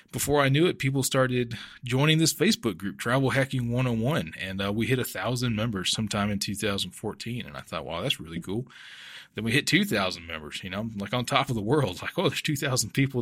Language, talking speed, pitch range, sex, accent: English, 215 wpm, 105-130 Hz, male, American